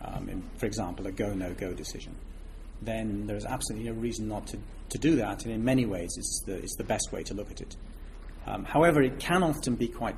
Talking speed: 210 wpm